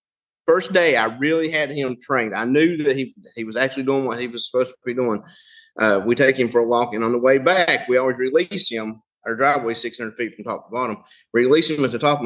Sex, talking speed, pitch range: male, 255 wpm, 115-155 Hz